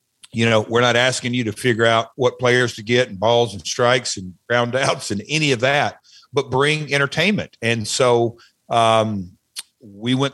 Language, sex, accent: English, male, American